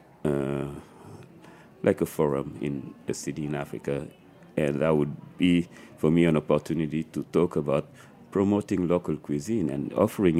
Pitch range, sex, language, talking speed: 75-85 Hz, male, English, 145 wpm